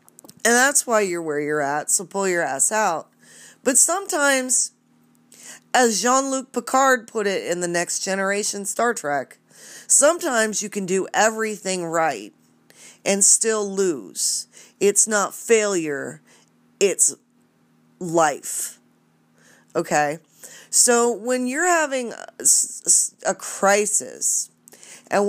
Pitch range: 165-235 Hz